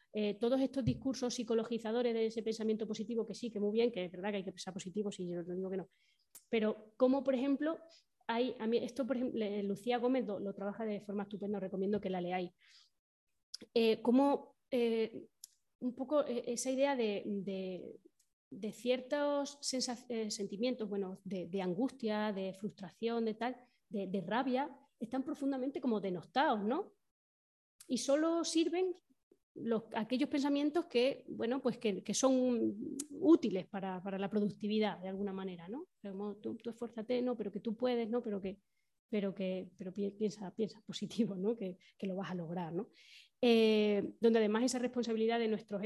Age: 20-39